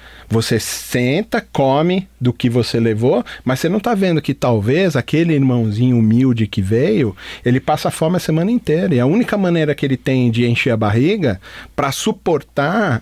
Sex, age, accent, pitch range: male, 40-59, Brazilian, 120-170 Hz